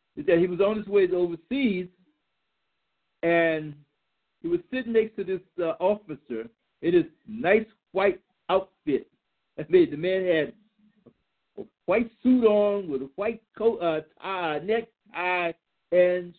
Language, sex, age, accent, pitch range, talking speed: English, male, 60-79, American, 165-225 Hz, 145 wpm